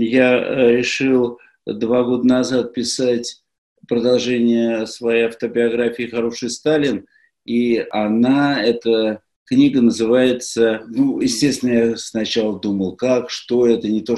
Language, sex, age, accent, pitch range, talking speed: Russian, male, 50-69, native, 110-125 Hz, 110 wpm